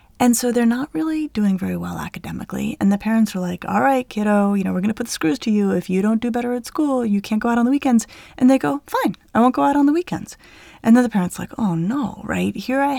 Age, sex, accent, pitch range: 30-49, female, American, 185-255 Hz